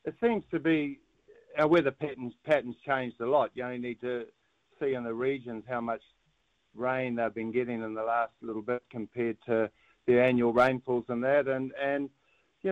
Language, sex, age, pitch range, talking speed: English, male, 50-69, 125-150 Hz, 190 wpm